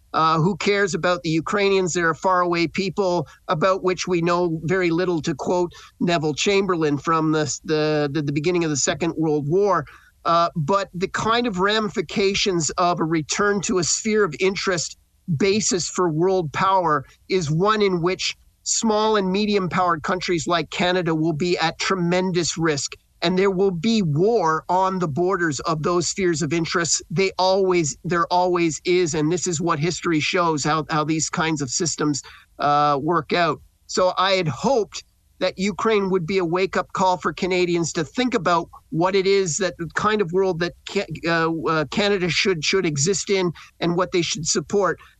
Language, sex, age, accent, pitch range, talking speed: English, male, 40-59, American, 165-195 Hz, 180 wpm